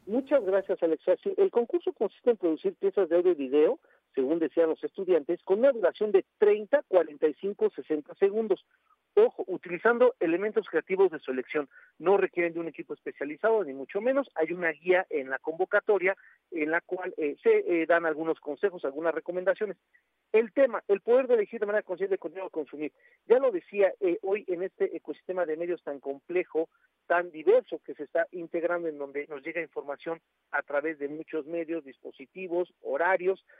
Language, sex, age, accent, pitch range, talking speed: Spanish, male, 50-69, Mexican, 175-245 Hz, 180 wpm